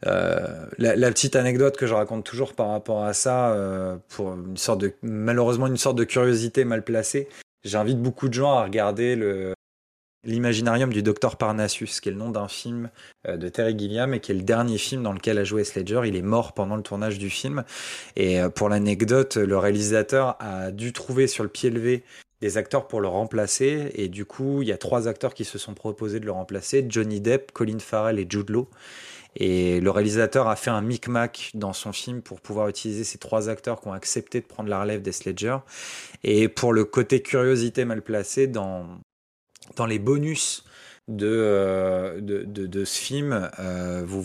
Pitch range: 100-120 Hz